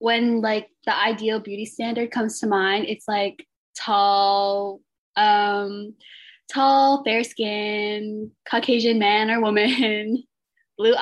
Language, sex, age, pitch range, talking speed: English, female, 10-29, 200-230 Hz, 115 wpm